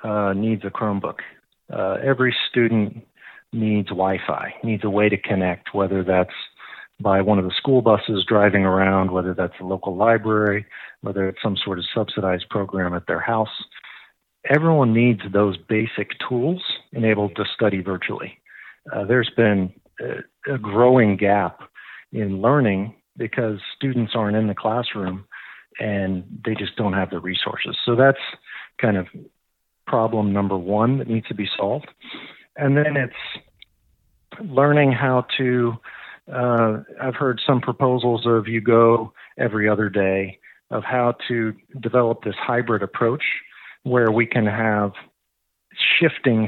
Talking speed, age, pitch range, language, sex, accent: 145 wpm, 40-59, 100-125 Hz, English, male, American